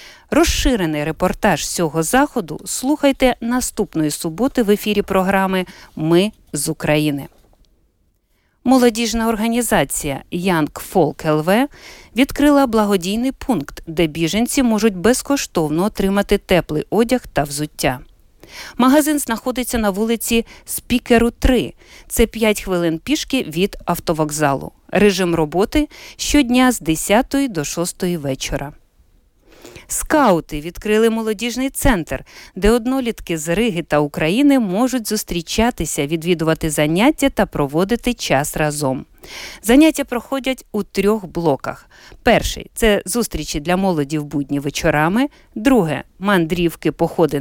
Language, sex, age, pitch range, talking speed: Ukrainian, female, 50-69, 160-240 Hz, 110 wpm